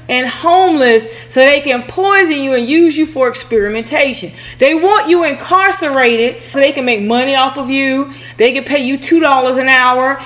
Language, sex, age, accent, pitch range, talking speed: English, female, 30-49, American, 275-380 Hz, 180 wpm